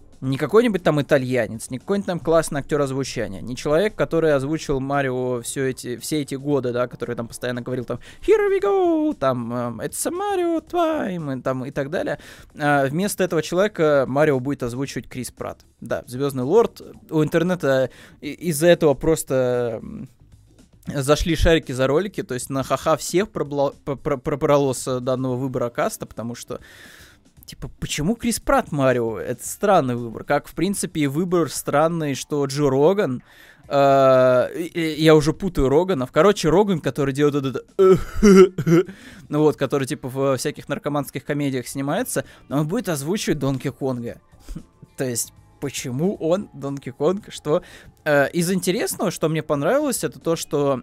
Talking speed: 160 wpm